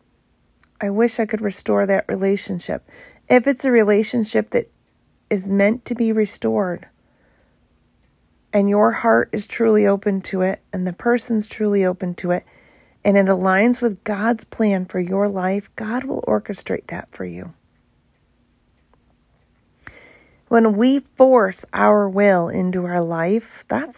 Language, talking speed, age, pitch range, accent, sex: English, 140 wpm, 40-59, 190-225 Hz, American, female